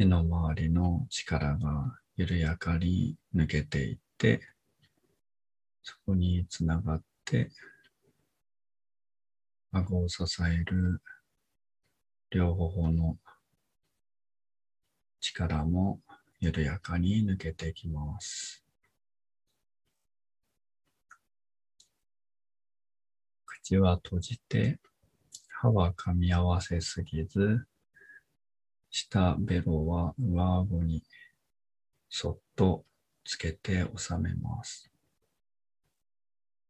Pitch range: 80-120 Hz